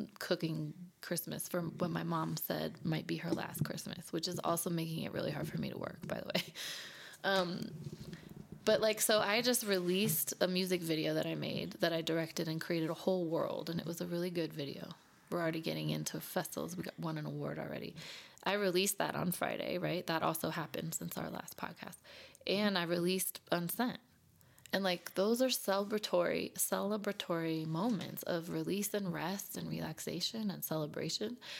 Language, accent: English, American